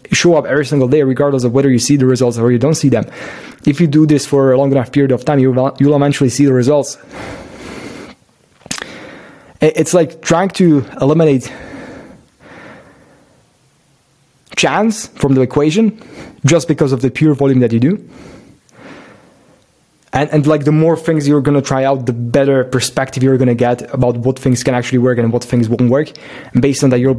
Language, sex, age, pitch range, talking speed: English, male, 20-39, 125-145 Hz, 185 wpm